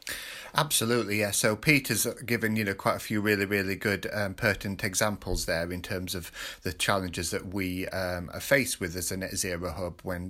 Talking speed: 200 wpm